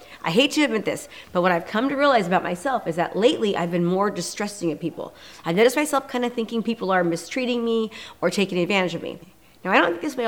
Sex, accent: female, American